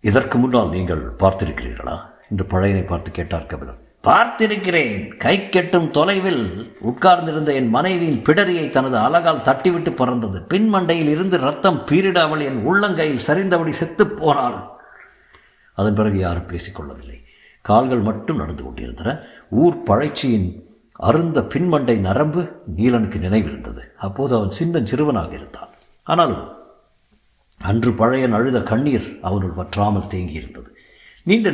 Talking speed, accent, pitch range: 110 wpm, native, 95-155 Hz